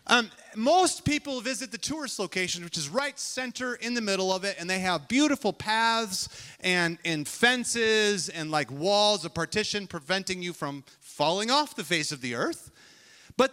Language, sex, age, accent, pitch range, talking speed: English, male, 30-49, American, 185-255 Hz, 175 wpm